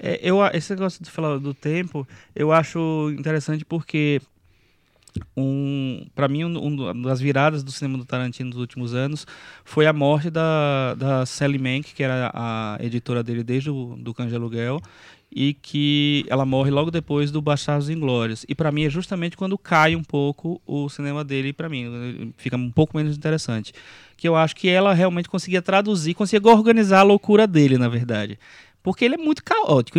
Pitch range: 135-180 Hz